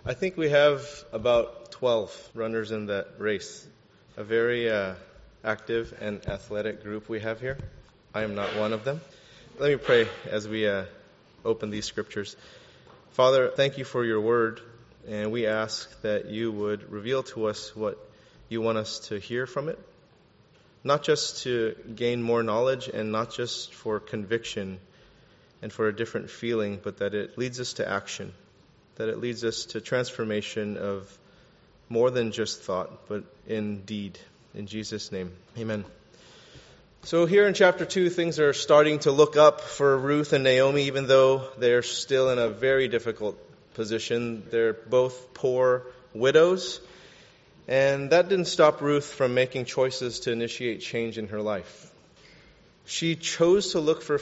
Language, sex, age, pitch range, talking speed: English, male, 30-49, 110-135 Hz, 160 wpm